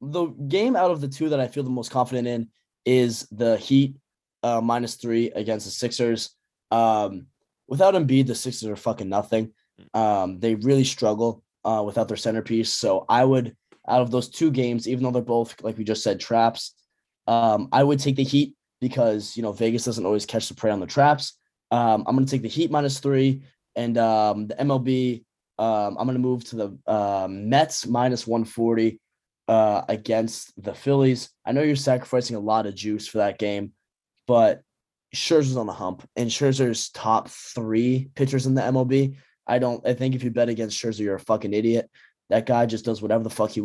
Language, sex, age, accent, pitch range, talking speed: English, male, 10-29, American, 110-130 Hz, 200 wpm